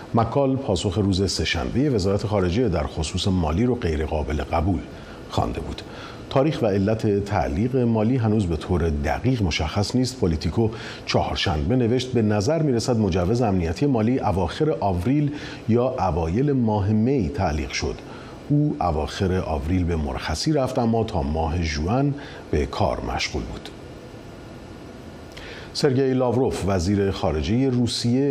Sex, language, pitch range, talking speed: male, Persian, 85-125 Hz, 130 wpm